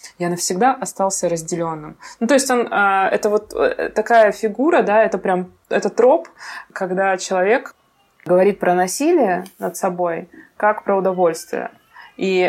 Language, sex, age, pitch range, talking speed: Russian, female, 20-39, 175-210 Hz, 135 wpm